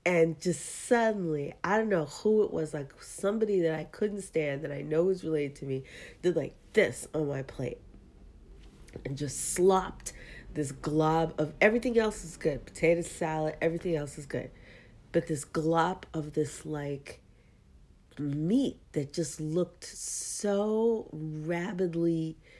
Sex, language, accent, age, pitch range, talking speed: female, English, American, 40-59, 155-235 Hz, 150 wpm